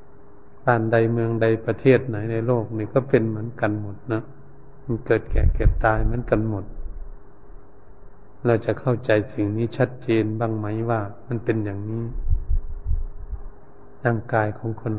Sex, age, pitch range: male, 70-89, 110-135 Hz